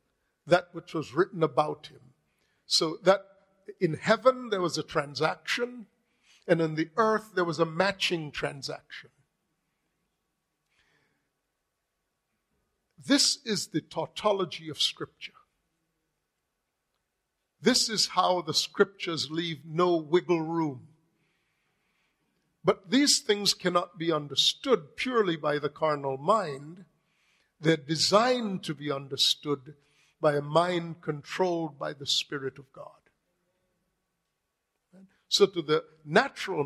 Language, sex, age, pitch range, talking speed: English, male, 50-69, 155-195 Hz, 110 wpm